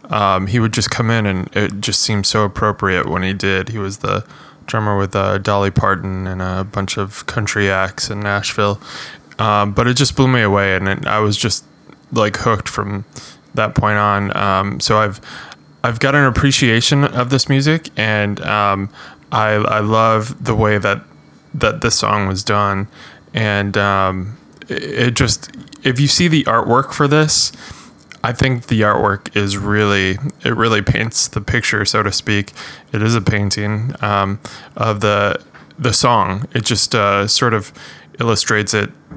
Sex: male